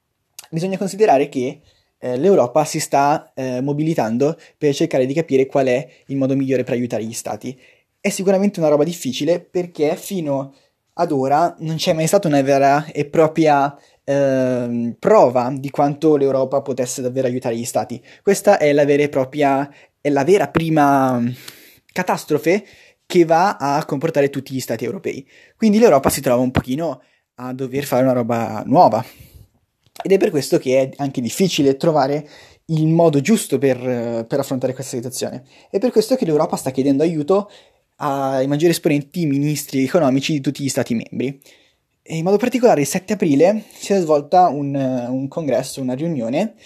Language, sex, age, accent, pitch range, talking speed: Italian, male, 20-39, native, 130-170 Hz, 165 wpm